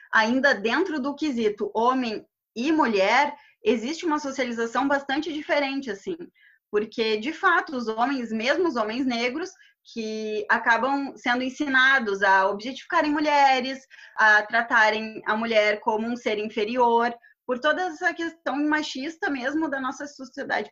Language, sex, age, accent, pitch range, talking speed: Portuguese, female, 20-39, Brazilian, 220-290 Hz, 135 wpm